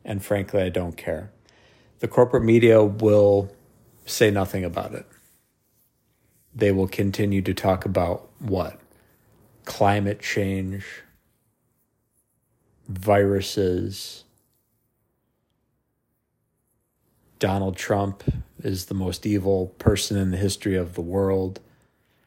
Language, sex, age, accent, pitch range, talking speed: English, male, 50-69, American, 95-115 Hz, 95 wpm